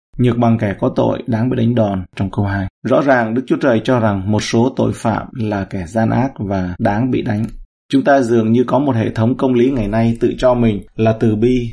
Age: 20-39